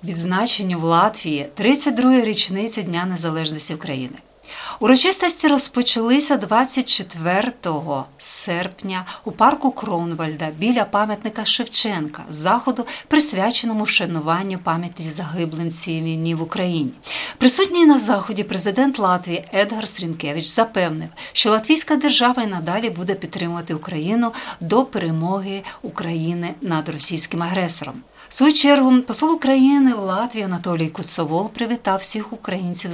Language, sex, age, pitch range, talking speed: Ukrainian, female, 50-69, 170-235 Hz, 110 wpm